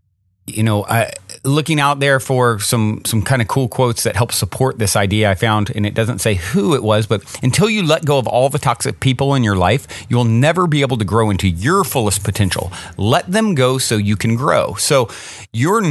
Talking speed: 225 wpm